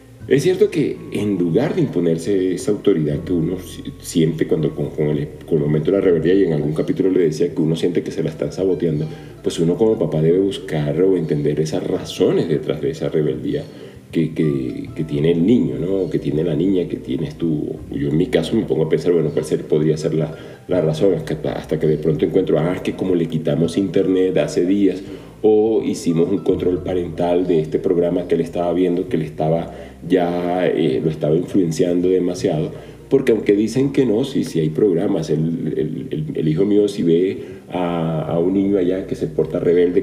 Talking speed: 205 wpm